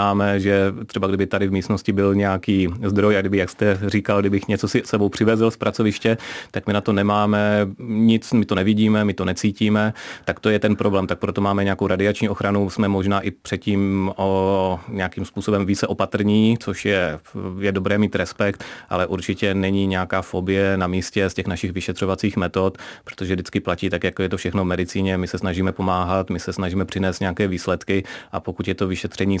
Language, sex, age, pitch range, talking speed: Czech, male, 30-49, 90-100 Hz, 200 wpm